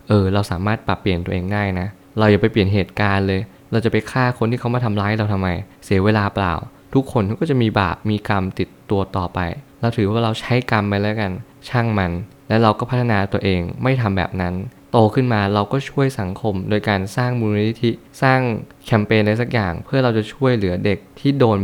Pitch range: 95-115 Hz